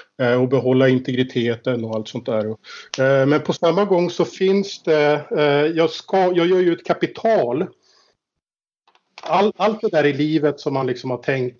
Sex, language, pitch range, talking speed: male, Swedish, 130-160 Hz, 165 wpm